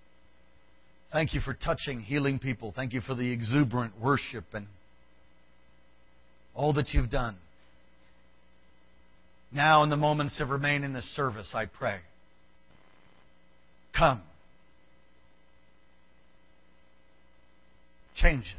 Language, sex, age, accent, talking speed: English, male, 50-69, American, 95 wpm